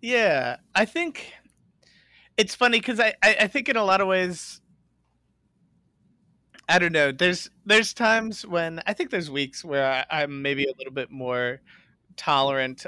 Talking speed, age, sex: 165 wpm, 30-49, male